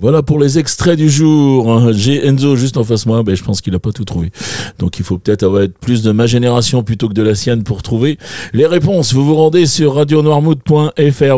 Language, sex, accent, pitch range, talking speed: French, male, French, 100-135 Hz, 225 wpm